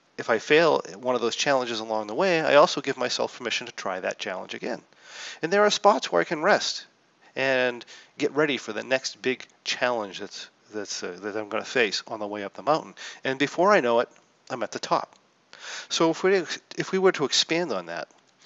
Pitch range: 120-170 Hz